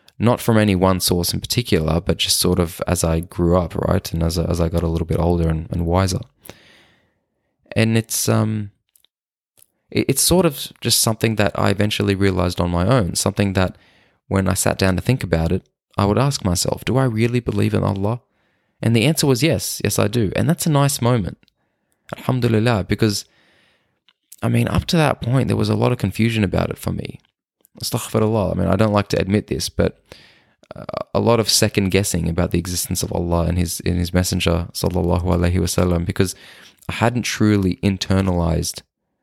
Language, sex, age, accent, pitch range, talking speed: English, male, 20-39, Australian, 85-110 Hz, 195 wpm